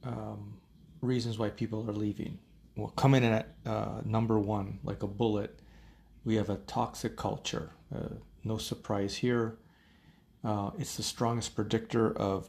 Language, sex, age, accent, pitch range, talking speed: English, male, 30-49, American, 105-120 Hz, 150 wpm